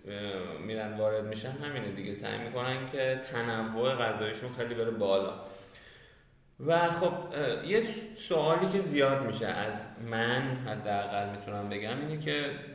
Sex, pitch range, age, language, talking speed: male, 115-140 Hz, 20-39, Persian, 125 wpm